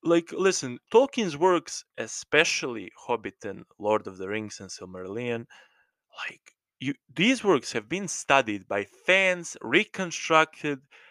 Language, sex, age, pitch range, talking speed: English, male, 20-39, 120-170 Hz, 125 wpm